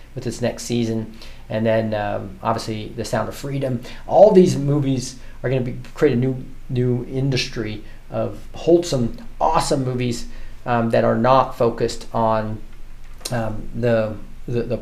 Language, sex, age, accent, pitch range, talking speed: English, male, 40-59, American, 115-140 Hz, 160 wpm